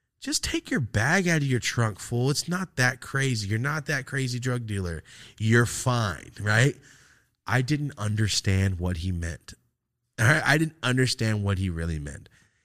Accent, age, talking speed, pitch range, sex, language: American, 30-49, 175 wpm, 95-125 Hz, male, English